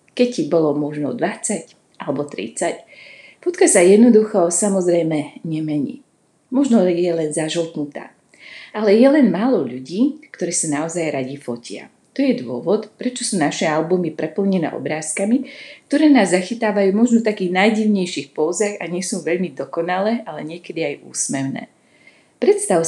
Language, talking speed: Slovak, 140 wpm